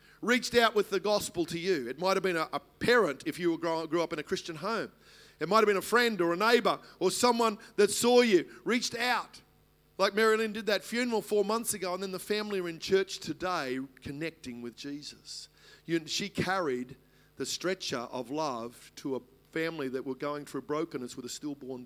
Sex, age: male, 50-69